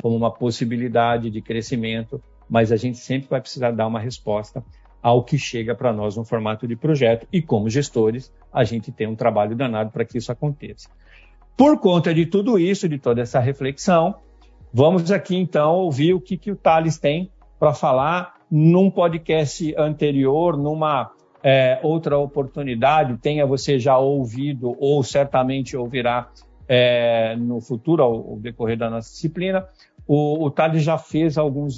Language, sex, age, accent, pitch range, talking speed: Portuguese, male, 50-69, Brazilian, 120-155 Hz, 160 wpm